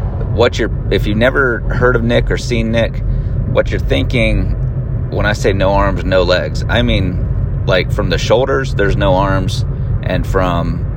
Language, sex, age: English, male, 30-49